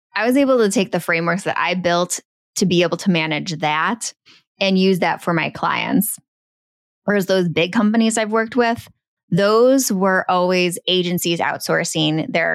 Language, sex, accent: English, female, American